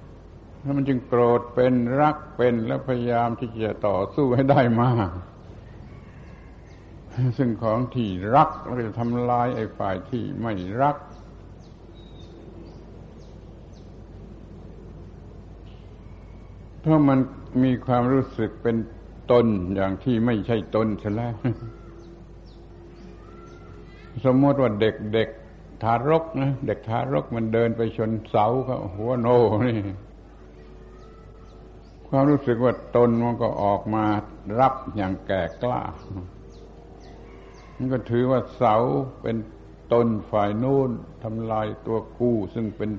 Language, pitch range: Thai, 100-125 Hz